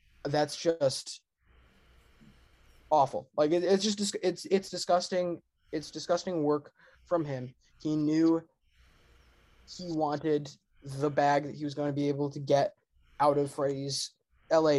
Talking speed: 135 wpm